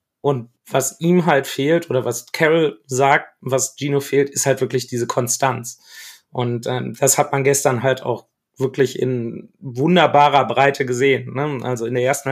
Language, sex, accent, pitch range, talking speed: German, male, German, 125-145 Hz, 170 wpm